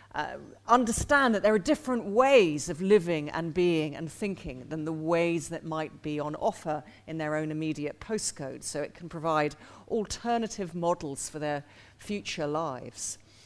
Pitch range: 150-195 Hz